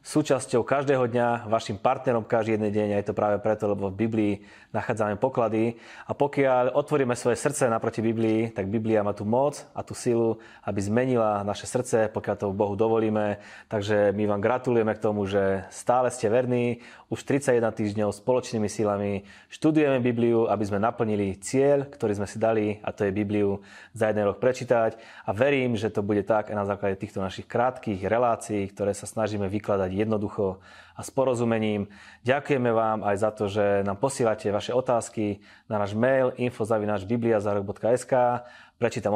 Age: 20-39